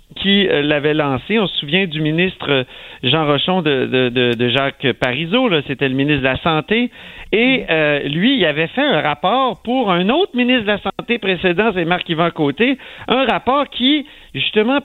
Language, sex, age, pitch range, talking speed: French, male, 50-69, 145-200 Hz, 190 wpm